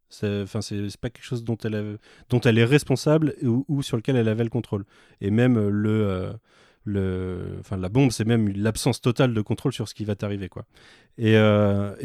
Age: 30-49